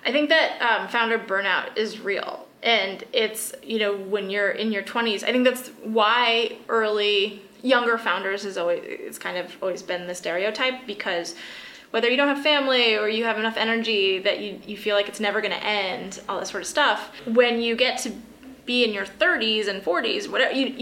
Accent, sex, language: American, female, English